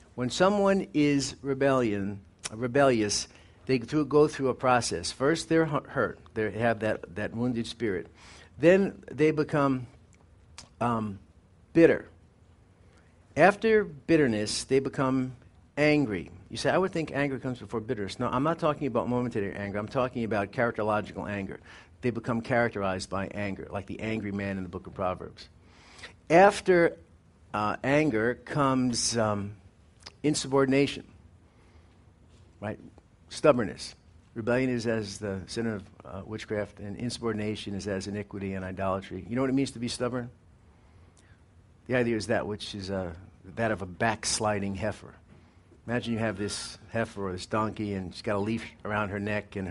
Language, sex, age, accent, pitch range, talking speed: English, male, 50-69, American, 95-125 Hz, 150 wpm